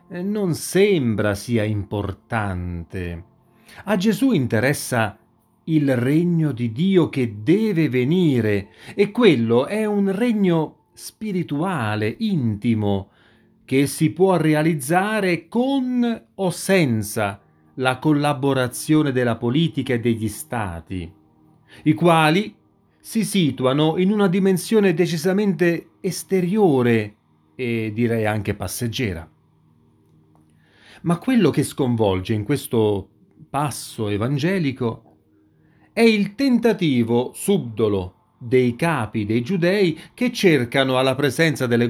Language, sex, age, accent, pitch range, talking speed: Italian, male, 40-59, native, 115-185 Hz, 100 wpm